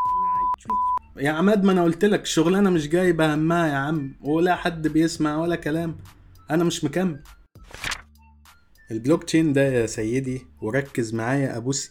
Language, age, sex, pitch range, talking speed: Arabic, 20-39, male, 115-150 Hz, 140 wpm